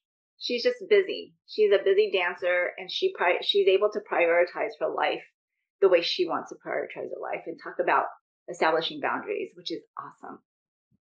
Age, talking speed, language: 30-49, 175 wpm, English